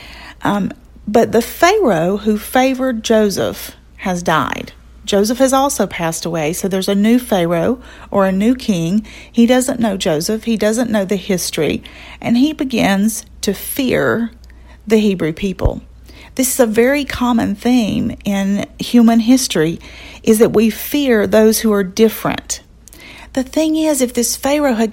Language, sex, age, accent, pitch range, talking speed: English, female, 40-59, American, 200-250 Hz, 155 wpm